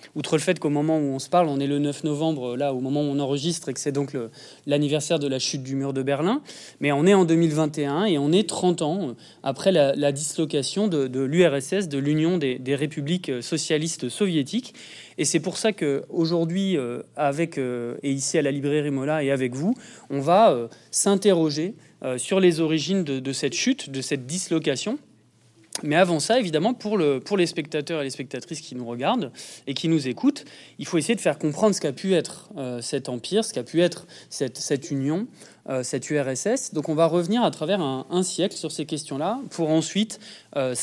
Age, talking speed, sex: 30-49, 205 wpm, male